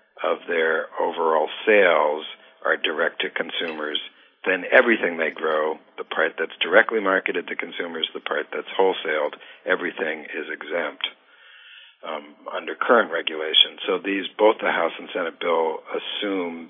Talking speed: 140 wpm